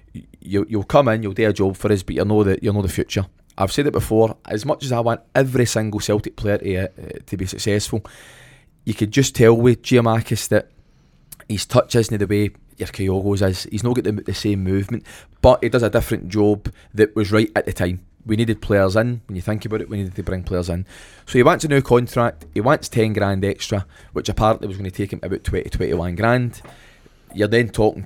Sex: male